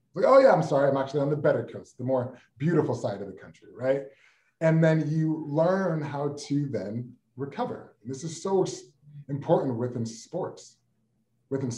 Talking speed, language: 175 wpm, English